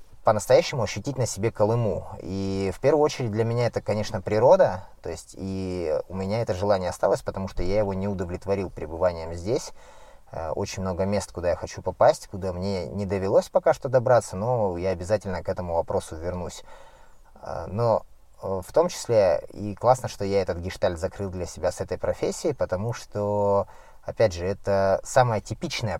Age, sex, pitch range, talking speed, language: 20-39, male, 90-110 Hz, 170 wpm, Russian